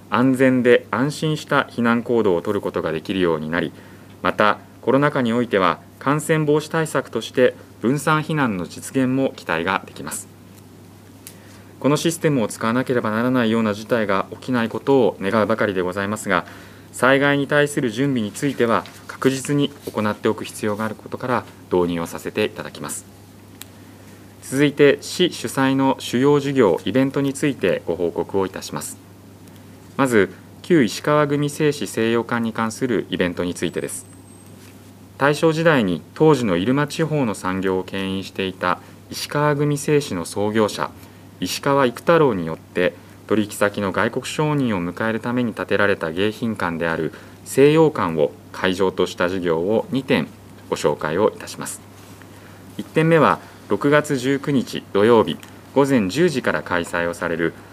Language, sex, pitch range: Japanese, male, 95-135 Hz